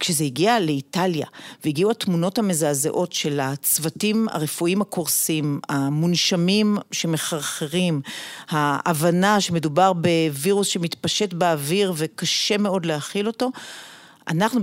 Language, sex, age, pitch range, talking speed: Hebrew, female, 40-59, 180-250 Hz, 90 wpm